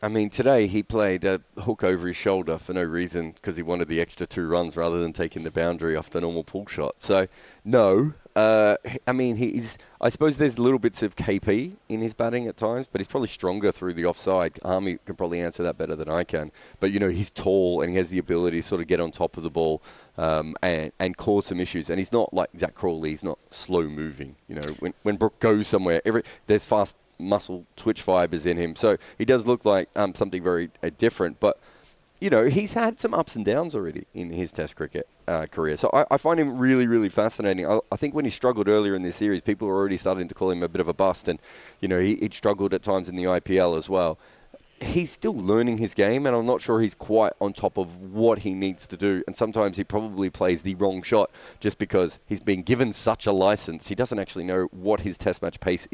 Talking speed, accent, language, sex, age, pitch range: 240 wpm, Australian, English, male, 30-49, 85-110 Hz